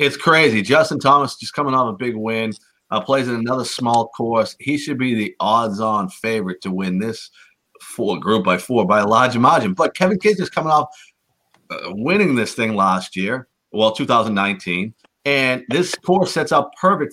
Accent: American